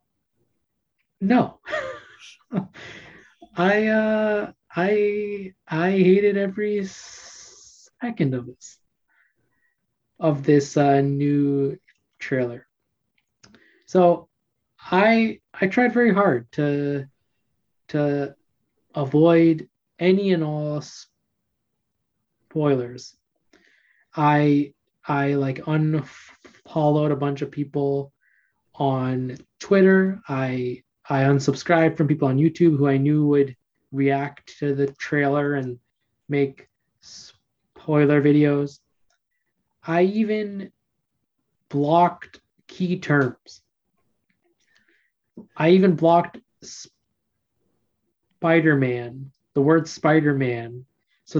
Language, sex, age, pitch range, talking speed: English, male, 20-39, 140-180 Hz, 85 wpm